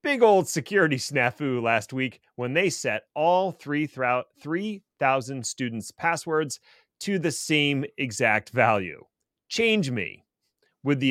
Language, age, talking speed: English, 30-49, 120 wpm